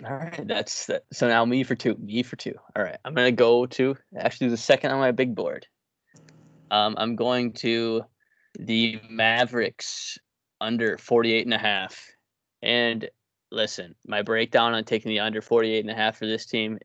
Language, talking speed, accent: English, 180 wpm, American